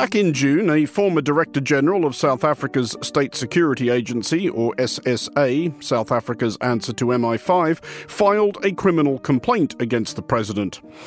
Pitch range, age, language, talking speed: 140-190 Hz, 50-69, English, 145 wpm